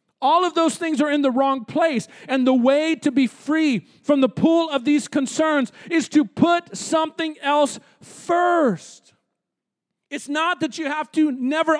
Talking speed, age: 175 wpm, 40-59